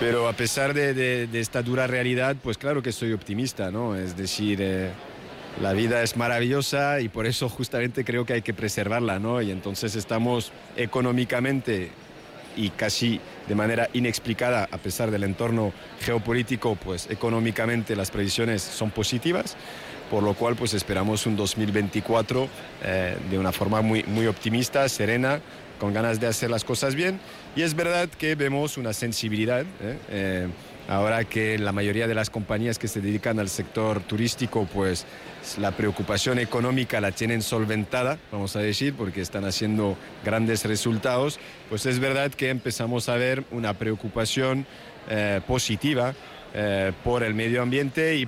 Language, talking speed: Spanish, 155 wpm